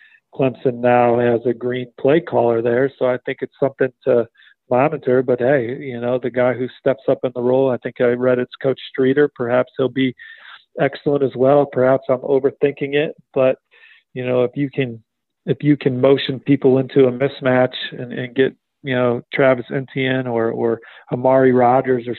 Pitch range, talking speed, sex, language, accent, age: 125-135 Hz, 190 wpm, male, English, American, 40-59